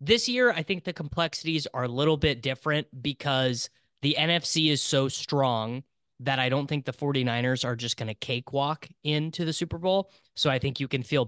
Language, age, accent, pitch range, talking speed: English, 20-39, American, 120-155 Hz, 200 wpm